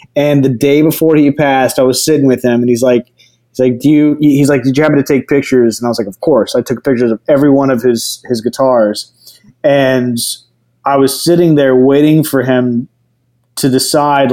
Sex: male